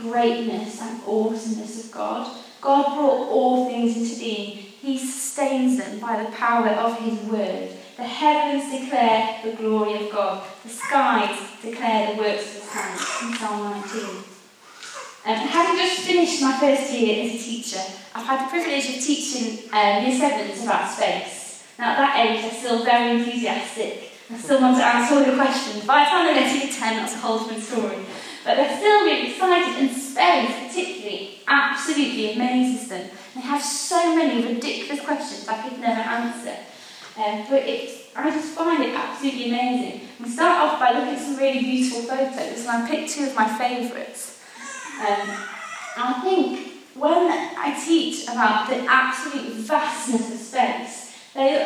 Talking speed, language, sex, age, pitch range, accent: 165 wpm, English, female, 20-39, 225-280 Hz, British